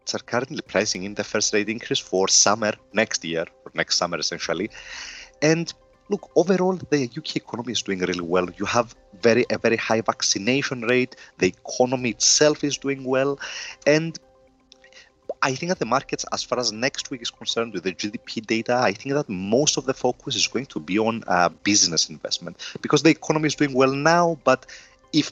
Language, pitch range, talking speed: English, 110-150 Hz, 190 wpm